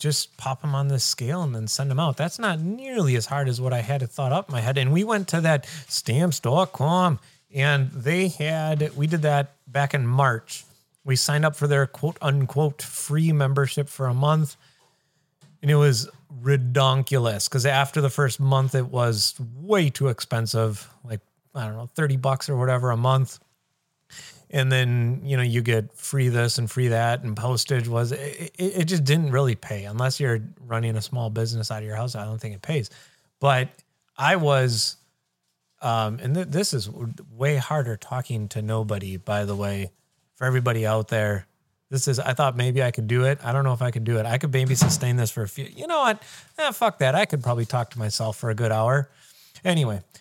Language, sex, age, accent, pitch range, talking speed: English, male, 30-49, American, 120-145 Hz, 205 wpm